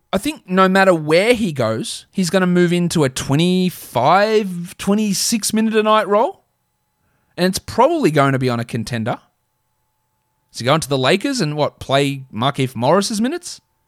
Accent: Australian